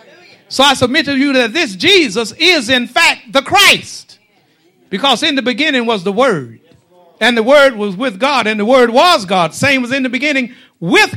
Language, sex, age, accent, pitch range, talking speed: English, male, 50-69, American, 195-275 Hz, 200 wpm